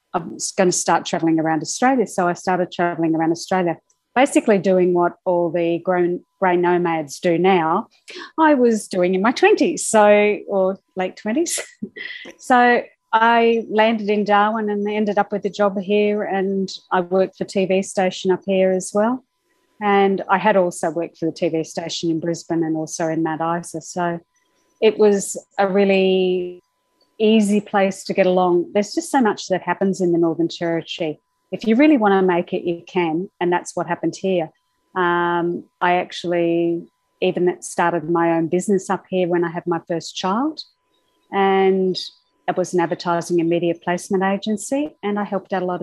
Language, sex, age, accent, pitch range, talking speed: English, female, 30-49, Australian, 170-205 Hz, 180 wpm